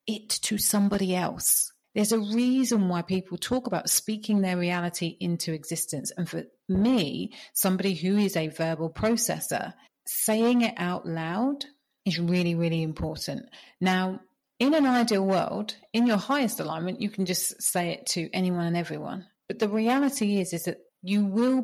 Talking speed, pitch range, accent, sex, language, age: 165 wpm, 175-220 Hz, British, female, English, 30-49